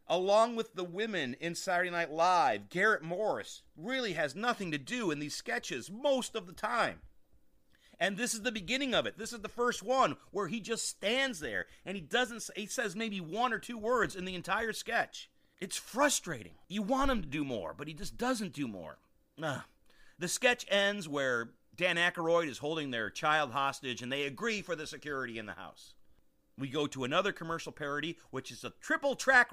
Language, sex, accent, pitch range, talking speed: English, male, American, 170-250 Hz, 205 wpm